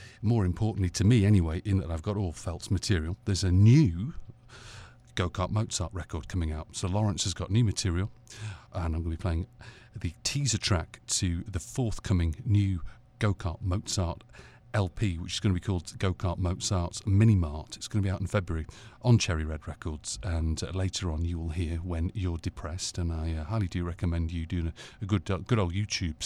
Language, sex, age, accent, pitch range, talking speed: English, male, 40-59, British, 85-105 Hz, 200 wpm